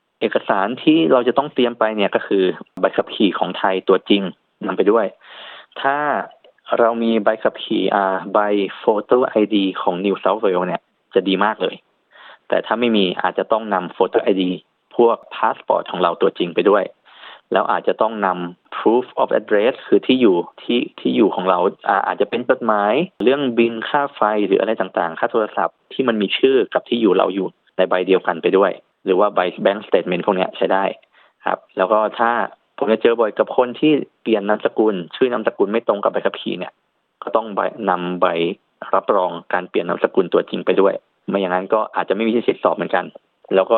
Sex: male